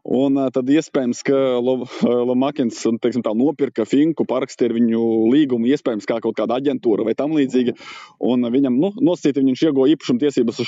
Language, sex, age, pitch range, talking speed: English, male, 20-39, 115-145 Hz, 170 wpm